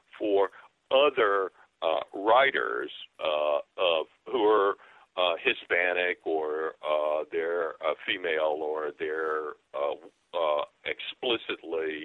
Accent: American